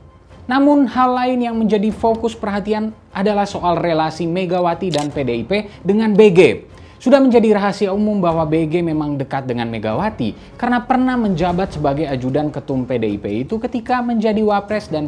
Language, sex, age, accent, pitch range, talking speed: Indonesian, male, 20-39, native, 145-225 Hz, 145 wpm